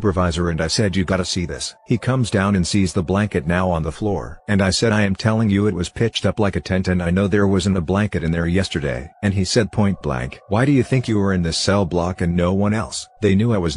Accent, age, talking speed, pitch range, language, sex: American, 50-69, 290 wpm, 90-105 Hz, English, male